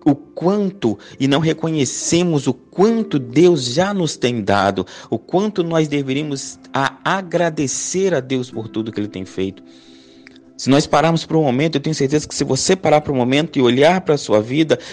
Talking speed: 190 wpm